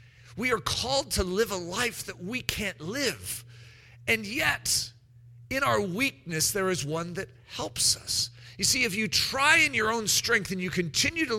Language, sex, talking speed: English, male, 185 wpm